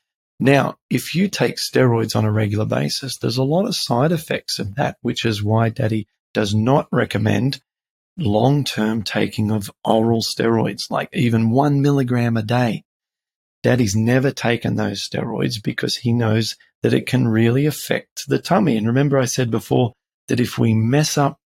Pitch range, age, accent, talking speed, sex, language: 110-135 Hz, 40-59, Australian, 165 wpm, male, English